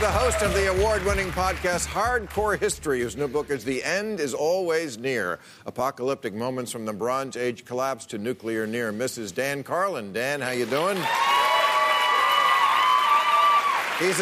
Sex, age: male, 50-69